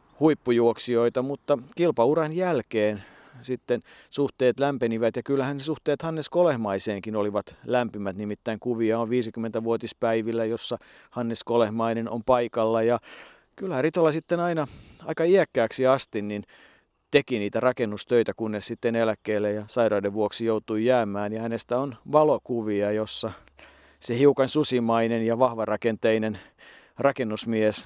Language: Finnish